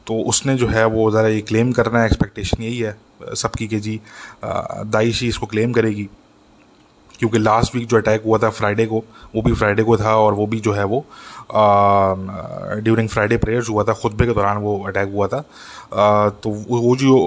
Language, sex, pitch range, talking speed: English, male, 105-115 Hz, 135 wpm